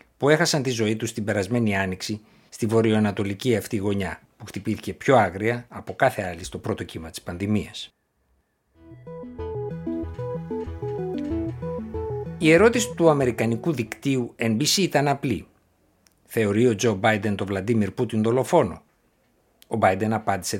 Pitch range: 100-135 Hz